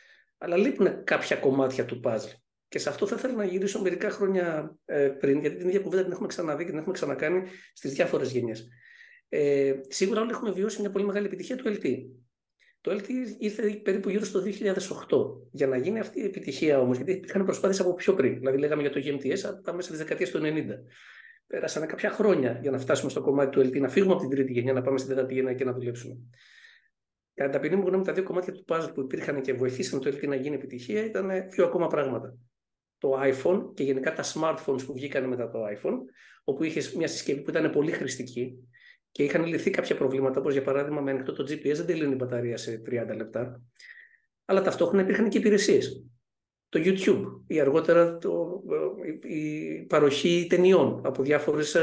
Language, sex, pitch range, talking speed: Greek, male, 135-200 Hz, 195 wpm